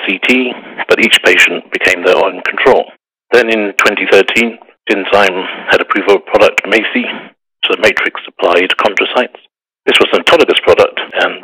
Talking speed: 140 wpm